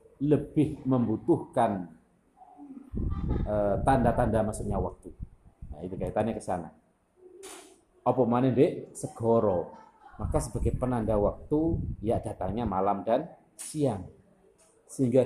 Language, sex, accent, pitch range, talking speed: Indonesian, male, native, 100-130 Hz, 100 wpm